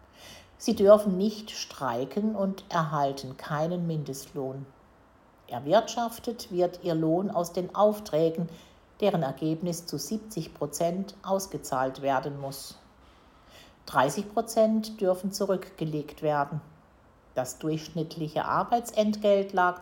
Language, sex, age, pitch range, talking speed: German, female, 50-69, 150-195 Hz, 90 wpm